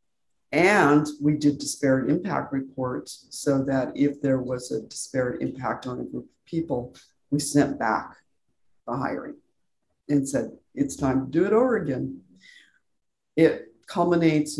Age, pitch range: 50-69, 135-175 Hz